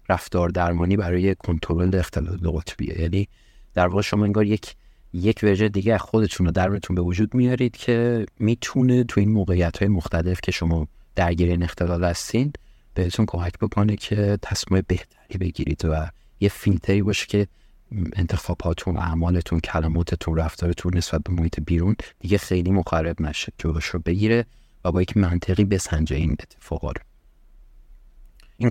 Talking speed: 145 wpm